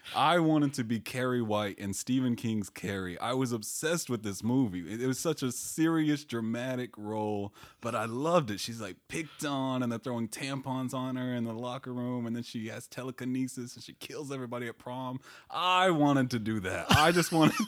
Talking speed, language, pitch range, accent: 205 wpm, English, 110-140 Hz, American